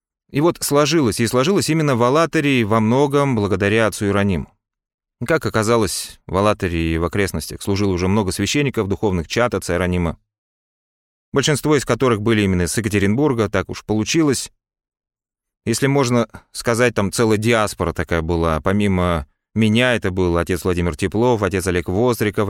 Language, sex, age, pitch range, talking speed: Russian, male, 30-49, 95-125 Hz, 150 wpm